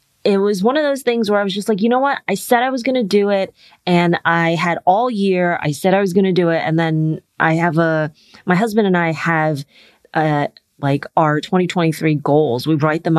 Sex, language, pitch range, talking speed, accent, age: female, English, 155-185 Hz, 240 wpm, American, 30-49